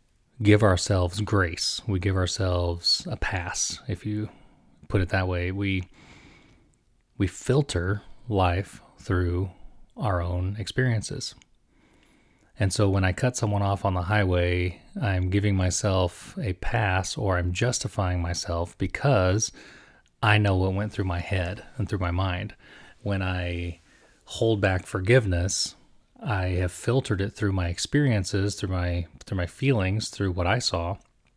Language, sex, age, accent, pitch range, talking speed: English, male, 30-49, American, 90-105 Hz, 140 wpm